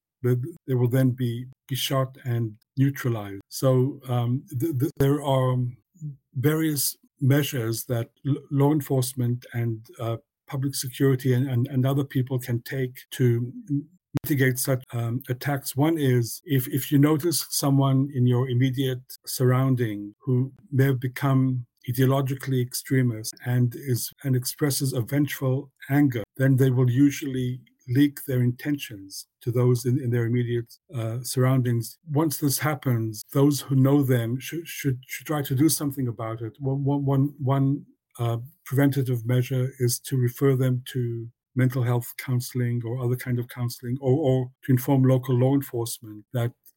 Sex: male